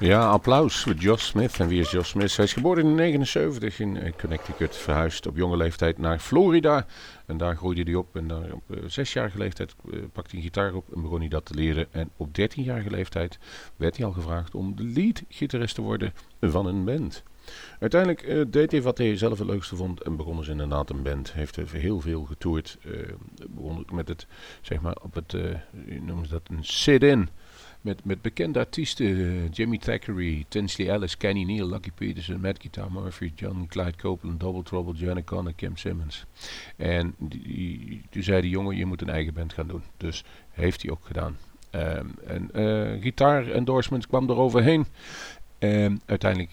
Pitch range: 80-105 Hz